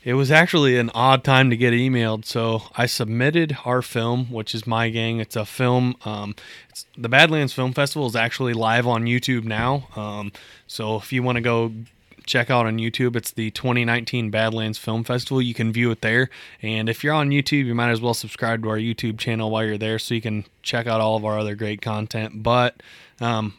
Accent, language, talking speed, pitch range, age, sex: American, English, 215 wpm, 110-125 Hz, 20-39, male